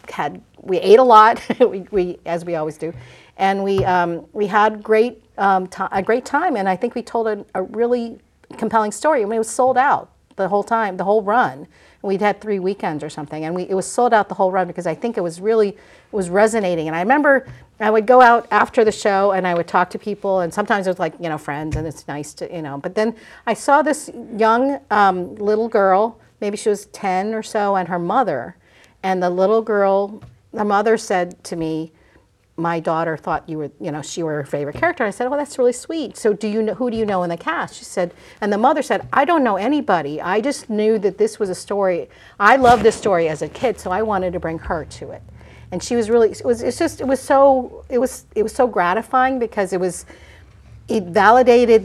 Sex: female